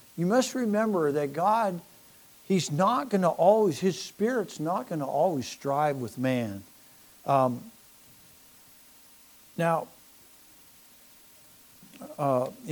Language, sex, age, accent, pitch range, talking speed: English, male, 60-79, American, 145-175 Hz, 105 wpm